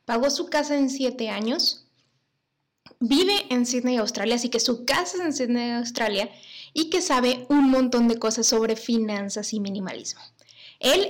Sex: female